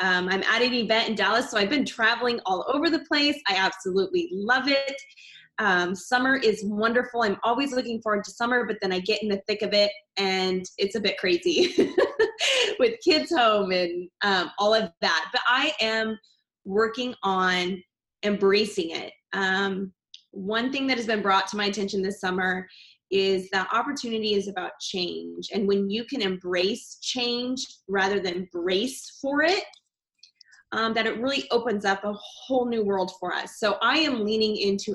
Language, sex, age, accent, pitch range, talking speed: English, female, 20-39, American, 195-270 Hz, 180 wpm